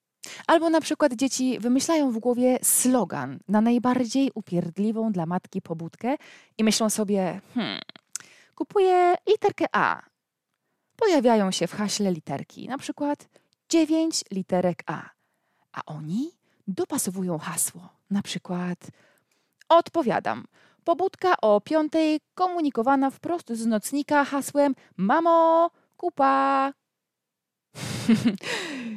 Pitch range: 185-285 Hz